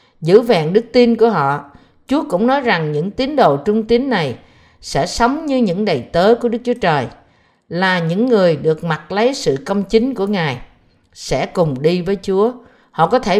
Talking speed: 200 wpm